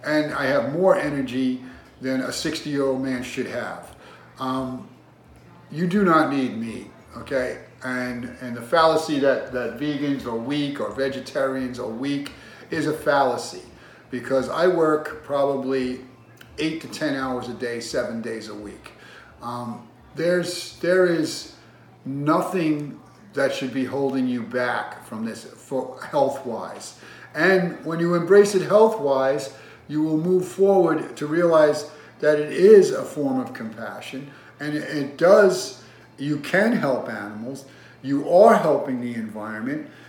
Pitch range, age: 130-165 Hz, 50-69